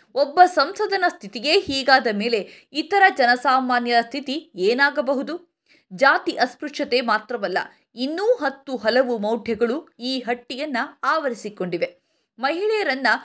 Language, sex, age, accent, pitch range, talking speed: Kannada, female, 20-39, native, 225-310 Hz, 90 wpm